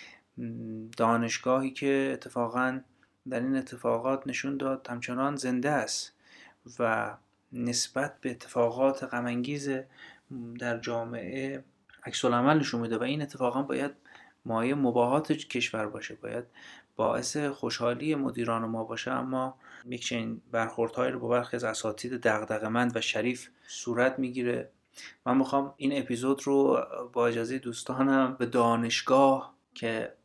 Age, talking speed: 30-49, 115 wpm